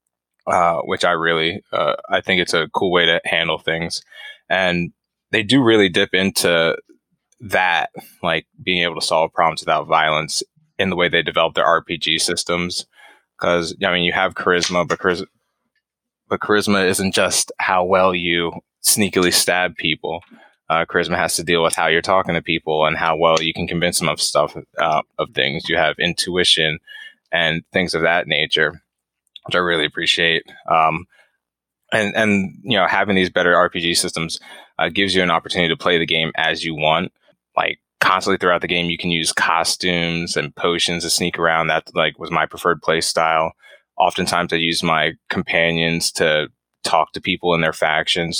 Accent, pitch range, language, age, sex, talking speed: American, 80-95 Hz, English, 20-39, male, 180 wpm